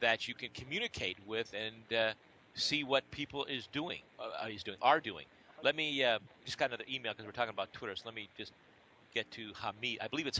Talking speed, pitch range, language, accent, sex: 225 wpm, 105-135 Hz, English, American, male